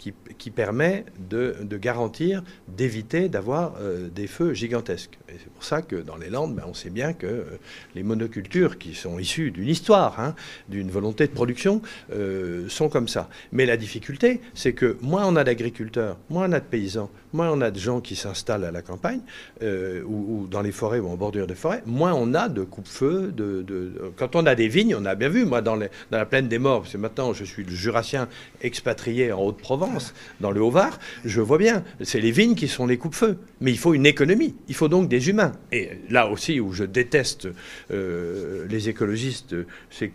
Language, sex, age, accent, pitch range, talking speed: English, male, 50-69, French, 105-160 Hz, 210 wpm